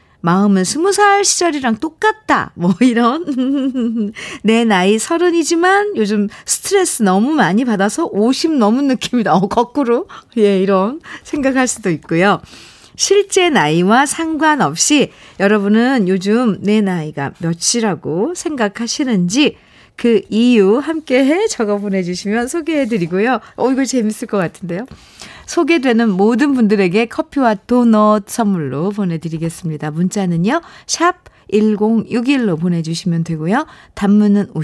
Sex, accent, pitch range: female, native, 190-275 Hz